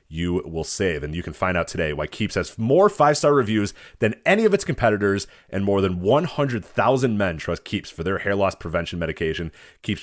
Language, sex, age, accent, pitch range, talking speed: English, male, 30-49, American, 90-135 Hz, 205 wpm